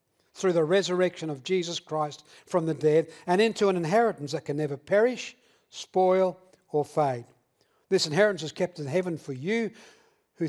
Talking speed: 165 wpm